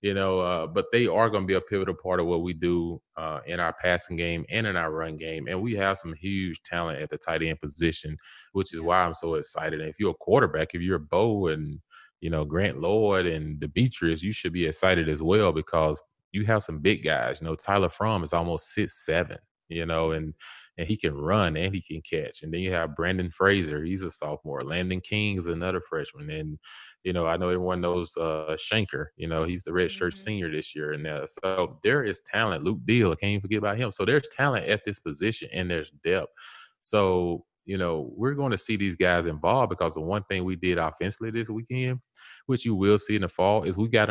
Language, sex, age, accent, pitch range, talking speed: English, male, 20-39, American, 80-100 Hz, 235 wpm